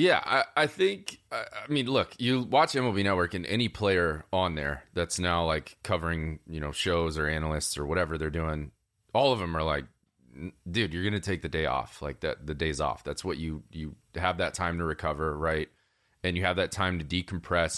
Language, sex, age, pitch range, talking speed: English, male, 30-49, 80-110 Hz, 215 wpm